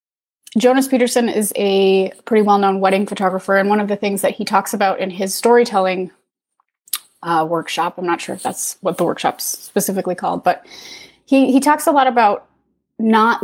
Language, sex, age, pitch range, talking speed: English, female, 20-39, 190-245 Hz, 180 wpm